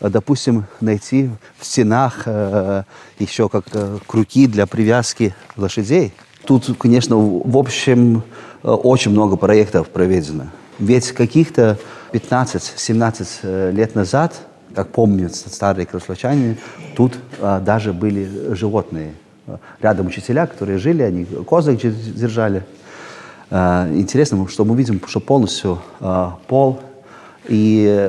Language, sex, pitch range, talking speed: Russian, male, 100-130 Hz, 105 wpm